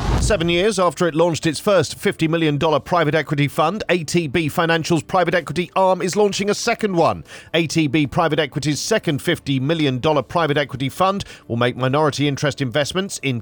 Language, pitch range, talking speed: English, 140-175 Hz, 165 wpm